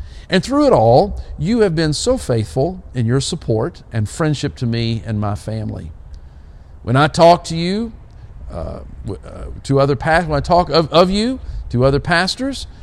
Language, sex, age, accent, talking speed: English, male, 50-69, American, 180 wpm